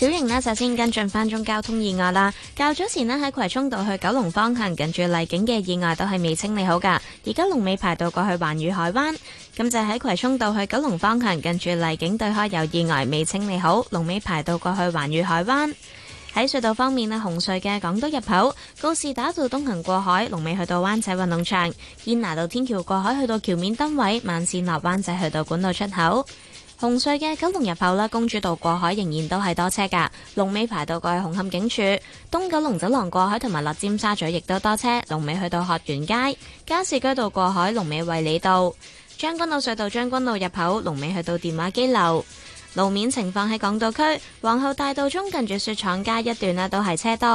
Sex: female